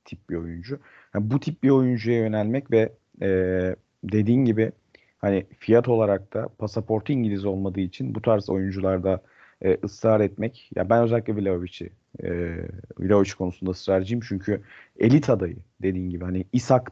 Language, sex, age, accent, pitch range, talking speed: Turkish, male, 40-59, native, 95-120 Hz, 155 wpm